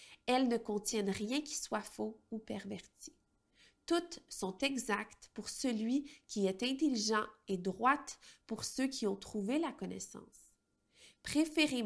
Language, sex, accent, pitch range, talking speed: French, female, Canadian, 205-260 Hz, 135 wpm